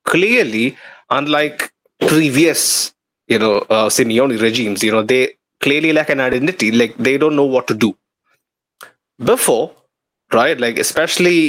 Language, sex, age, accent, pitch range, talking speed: English, male, 20-39, Indian, 110-150 Hz, 130 wpm